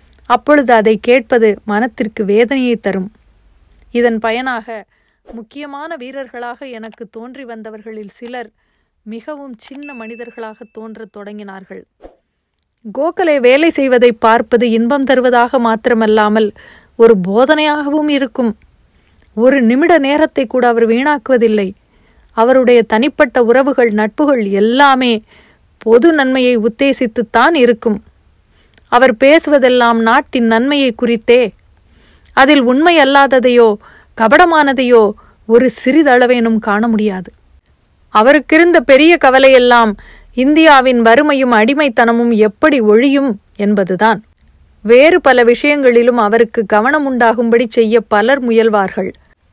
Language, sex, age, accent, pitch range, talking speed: Tamil, female, 30-49, native, 220-265 Hz, 90 wpm